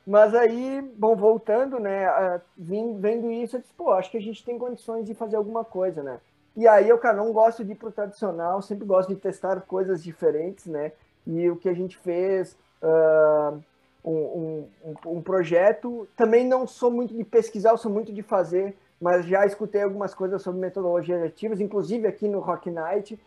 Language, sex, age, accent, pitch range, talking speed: Portuguese, male, 20-39, Brazilian, 185-230 Hz, 190 wpm